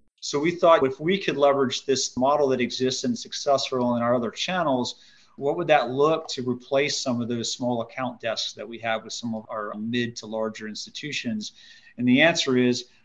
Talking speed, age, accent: 205 wpm, 40-59, American